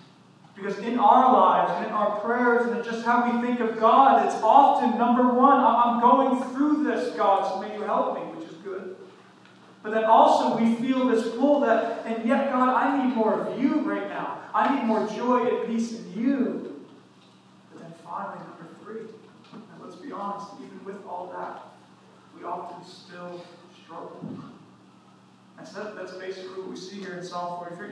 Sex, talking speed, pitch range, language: male, 185 wpm, 175-220 Hz, English